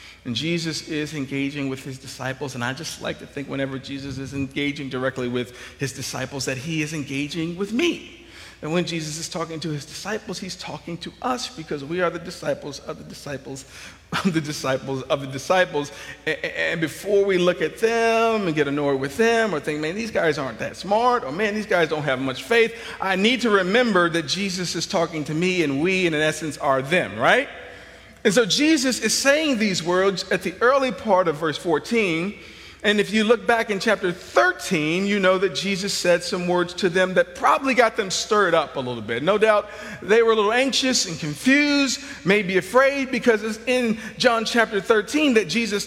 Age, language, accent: 50-69, English, American